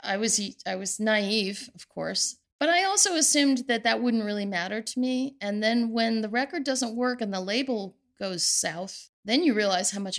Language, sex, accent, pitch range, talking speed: English, female, American, 195-245 Hz, 205 wpm